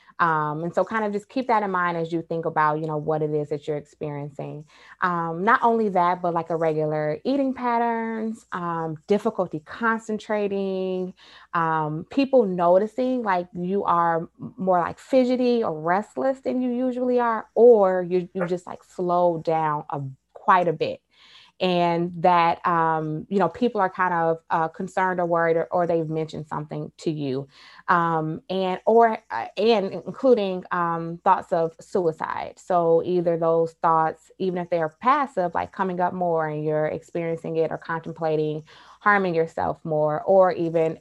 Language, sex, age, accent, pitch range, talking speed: English, female, 20-39, American, 160-200 Hz, 170 wpm